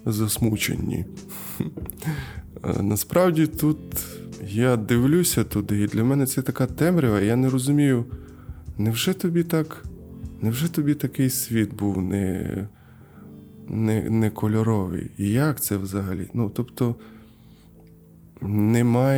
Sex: male